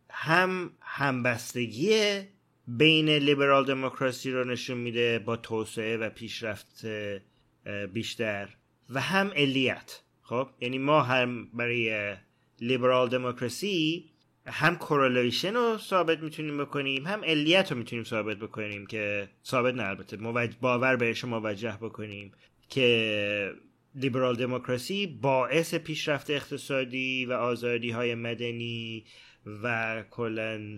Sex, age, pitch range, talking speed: male, 30-49, 115-150 Hz, 110 wpm